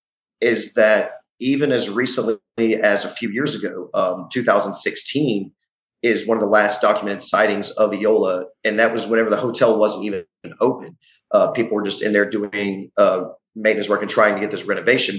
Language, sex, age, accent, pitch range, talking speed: English, male, 30-49, American, 100-115 Hz, 180 wpm